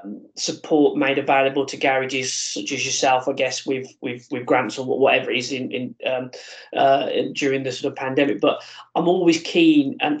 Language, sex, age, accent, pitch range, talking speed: English, male, 20-39, British, 135-155 Hz, 190 wpm